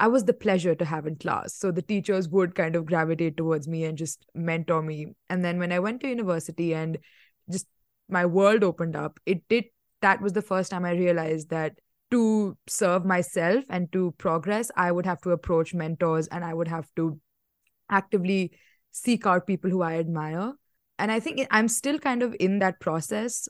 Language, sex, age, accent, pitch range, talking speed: English, female, 20-39, Indian, 165-200 Hz, 200 wpm